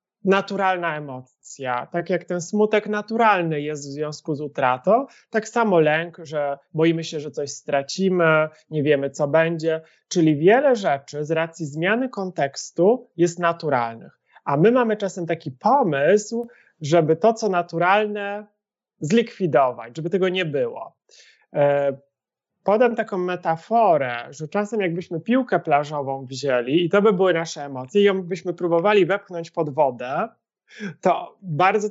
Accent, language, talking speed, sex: native, Polish, 135 wpm, male